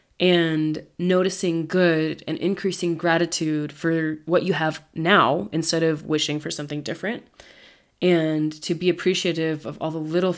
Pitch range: 155-180 Hz